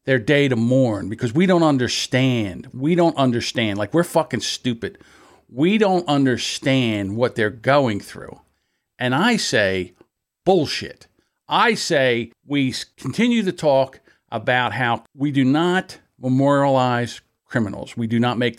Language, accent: English, American